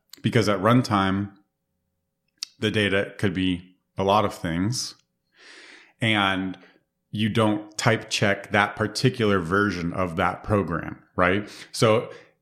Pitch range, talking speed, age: 95-115 Hz, 115 wpm, 30-49